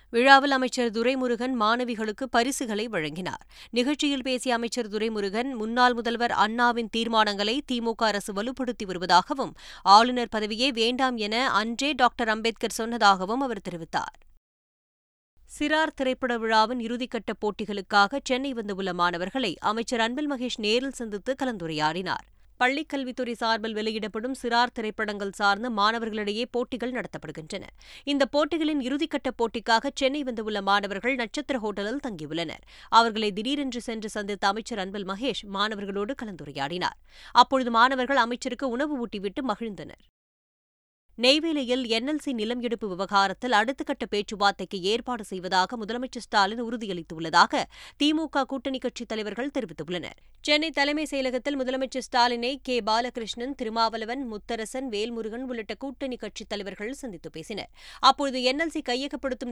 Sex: female